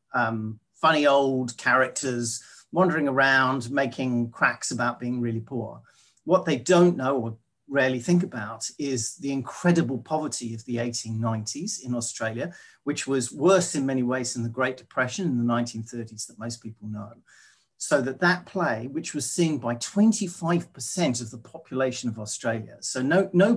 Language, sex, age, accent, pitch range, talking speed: English, male, 40-59, British, 120-160 Hz, 160 wpm